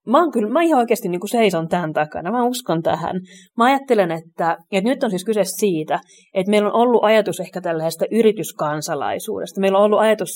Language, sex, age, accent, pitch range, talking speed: Finnish, female, 30-49, native, 170-210 Hz, 205 wpm